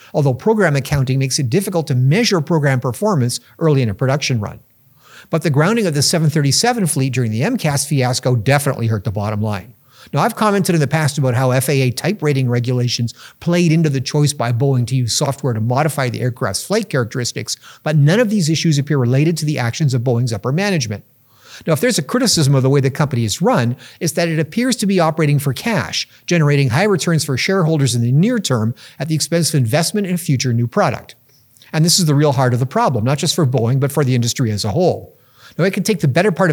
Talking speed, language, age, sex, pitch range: 230 wpm, English, 50-69, male, 125-170 Hz